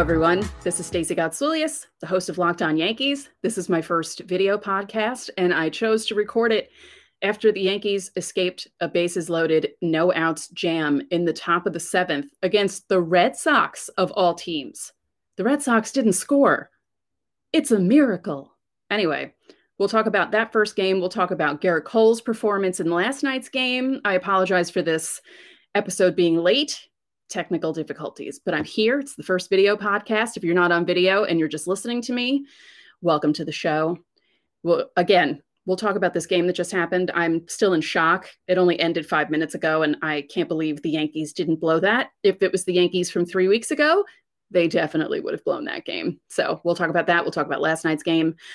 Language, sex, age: English, female, 30-49